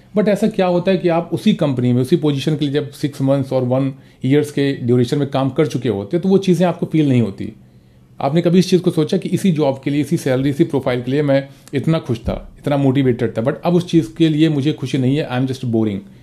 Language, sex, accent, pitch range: Hindi, male, native, 120-155 Hz